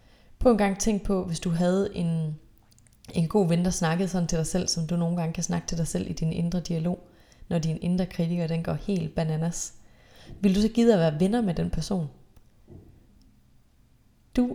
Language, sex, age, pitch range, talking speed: Danish, female, 30-49, 155-185 Hz, 200 wpm